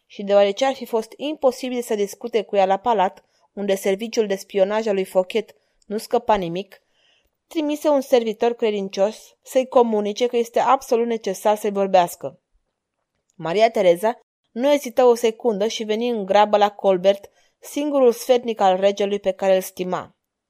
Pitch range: 200-245 Hz